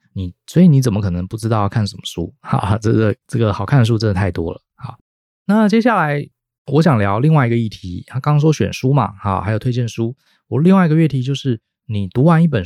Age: 20-39